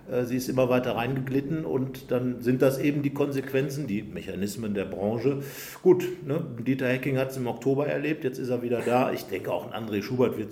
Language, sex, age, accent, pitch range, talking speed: German, male, 50-69, German, 105-130 Hz, 210 wpm